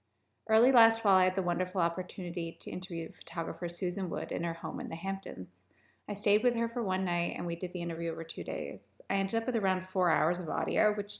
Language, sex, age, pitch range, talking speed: English, female, 30-49, 175-225 Hz, 235 wpm